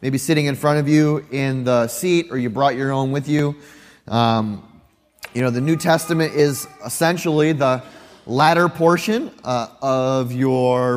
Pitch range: 140-165 Hz